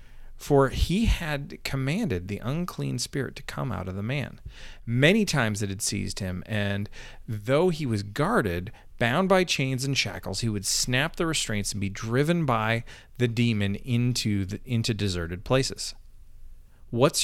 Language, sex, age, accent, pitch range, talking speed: English, male, 40-59, American, 100-145 Hz, 160 wpm